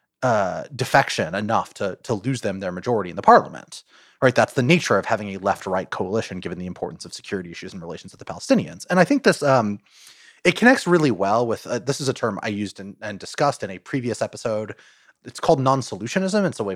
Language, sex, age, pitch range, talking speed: English, male, 30-49, 100-145 Hz, 220 wpm